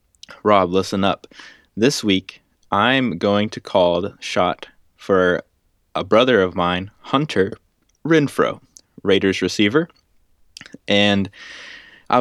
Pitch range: 95-110 Hz